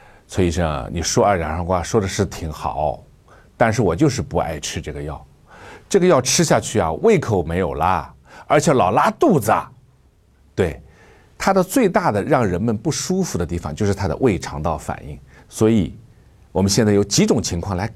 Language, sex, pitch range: Chinese, male, 85-130 Hz